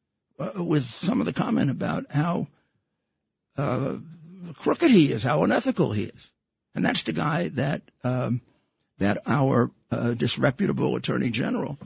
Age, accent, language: 60-79, American, English